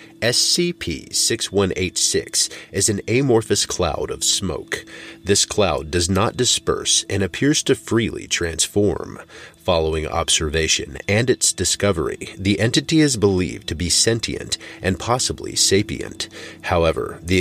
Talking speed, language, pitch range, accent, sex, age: 115 wpm, English, 85-110 Hz, American, male, 40-59